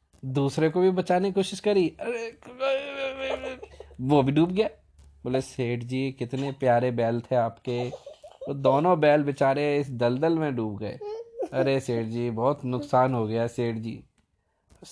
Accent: native